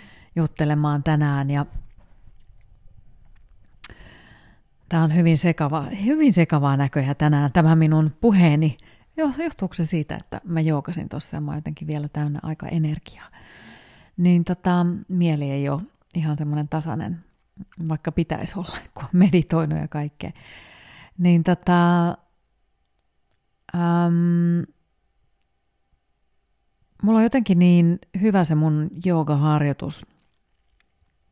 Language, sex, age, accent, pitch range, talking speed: Finnish, female, 30-49, native, 140-170 Hz, 105 wpm